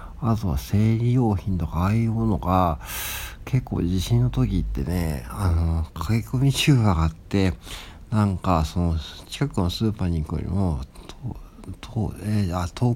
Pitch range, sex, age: 80-110 Hz, male, 60-79